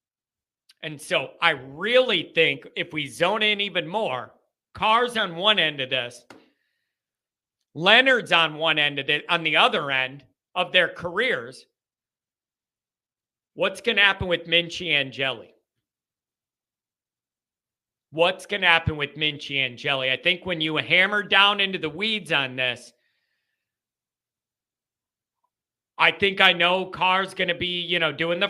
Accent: American